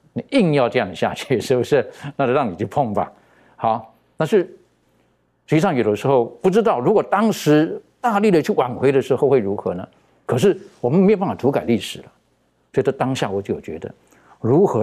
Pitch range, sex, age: 100-155 Hz, male, 60-79